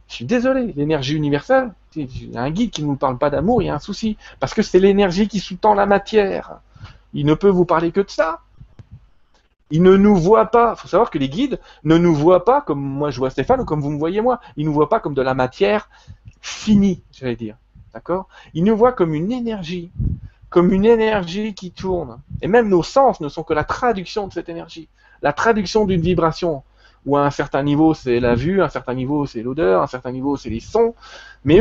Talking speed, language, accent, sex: 235 wpm, French, French, male